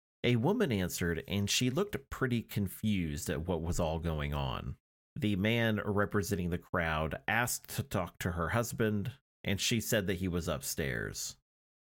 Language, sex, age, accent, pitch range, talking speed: English, male, 30-49, American, 85-110 Hz, 160 wpm